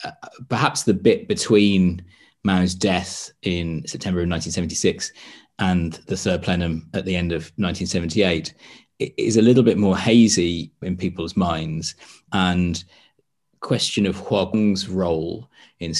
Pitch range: 85-100 Hz